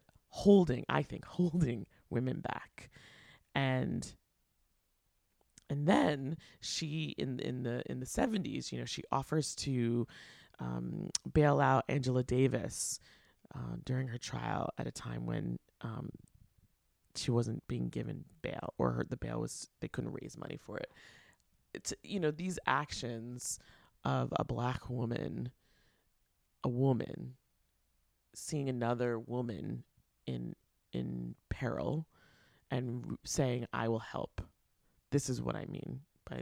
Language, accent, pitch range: English, American, 100-135 Hz